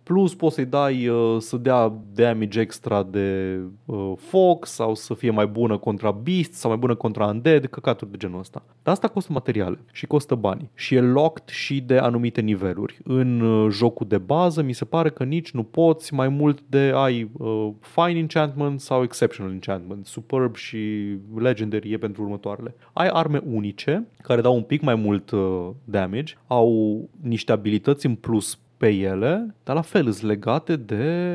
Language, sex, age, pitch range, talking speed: Romanian, male, 20-39, 110-155 Hz, 180 wpm